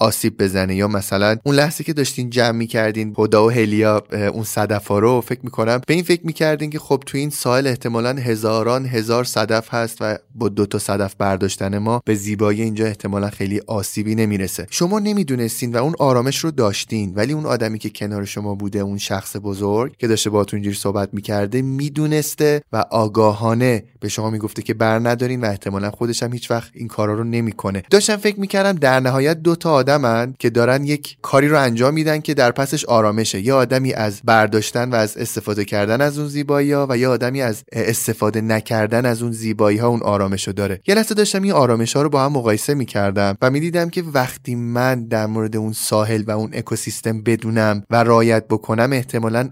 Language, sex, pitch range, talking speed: Persian, male, 105-130 Hz, 200 wpm